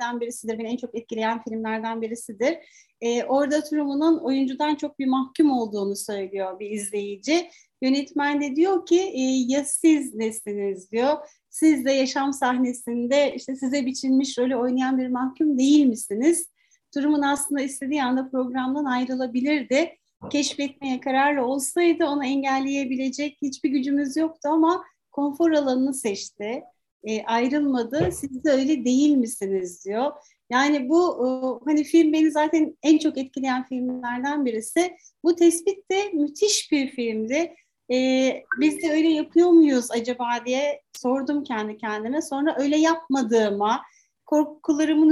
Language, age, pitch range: Turkish, 40-59, 250-305 Hz